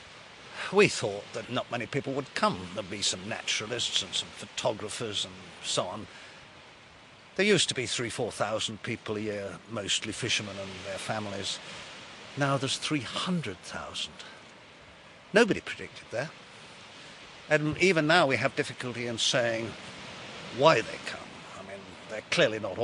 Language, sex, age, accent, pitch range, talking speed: English, male, 50-69, British, 105-150 Hz, 140 wpm